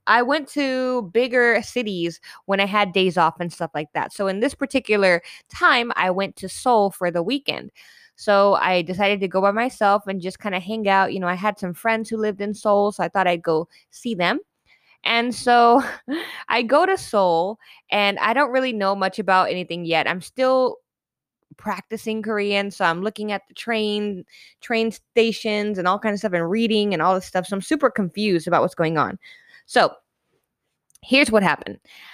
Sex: female